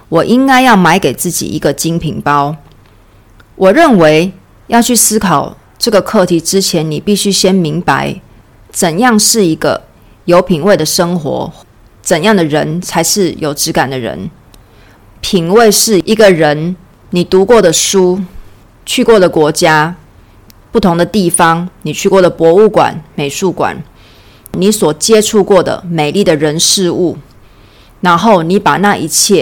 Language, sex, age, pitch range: Chinese, female, 30-49, 150-205 Hz